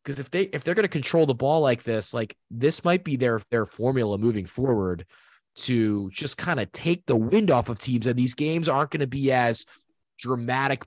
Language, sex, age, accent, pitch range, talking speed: English, male, 20-39, American, 110-150 Hz, 220 wpm